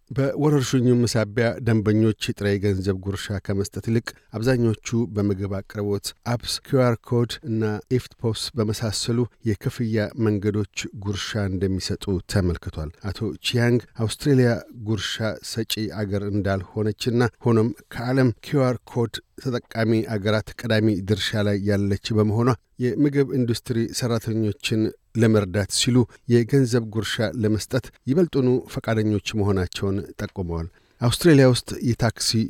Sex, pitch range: male, 105-120 Hz